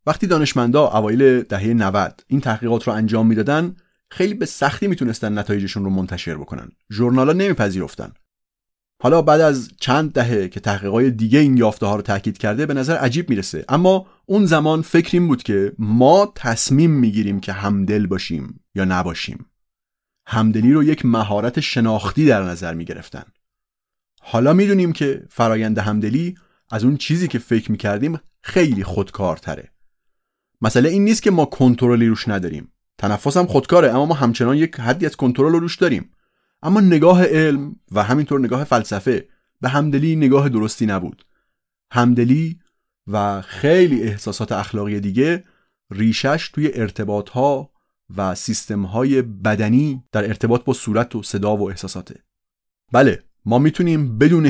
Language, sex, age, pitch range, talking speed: Persian, male, 30-49, 105-150 Hz, 145 wpm